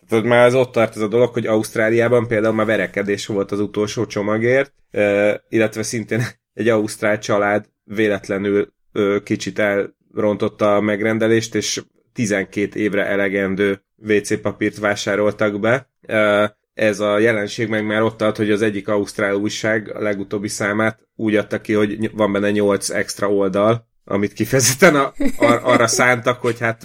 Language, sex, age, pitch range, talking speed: Hungarian, male, 30-49, 100-115 Hz, 155 wpm